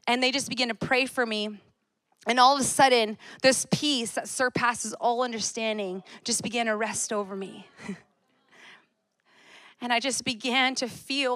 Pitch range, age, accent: 230-280 Hz, 30-49, American